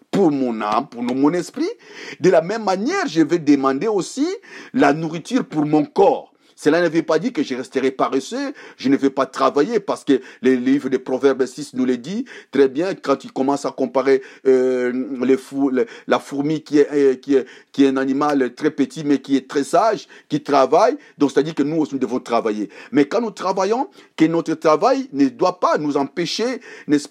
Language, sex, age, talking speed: French, male, 50-69, 205 wpm